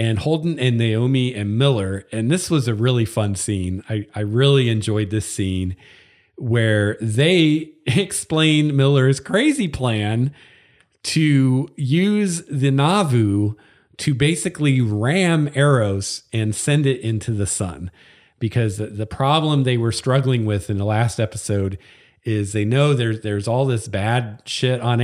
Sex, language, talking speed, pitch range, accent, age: male, English, 145 wpm, 105-140 Hz, American, 40-59